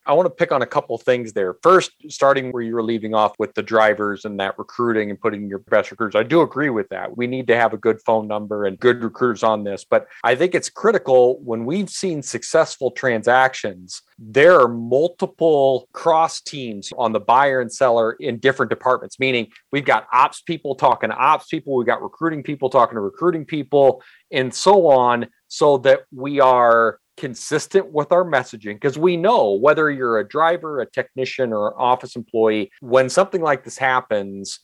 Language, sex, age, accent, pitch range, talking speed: English, male, 40-59, American, 115-150 Hz, 200 wpm